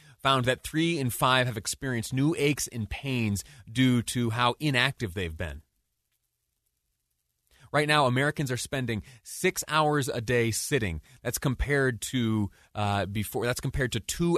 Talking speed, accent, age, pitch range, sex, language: 150 wpm, American, 30-49, 100-140 Hz, male, English